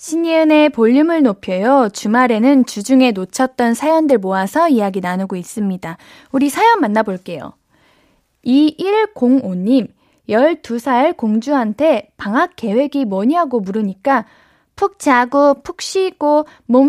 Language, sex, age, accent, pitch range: Korean, female, 10-29, native, 220-300 Hz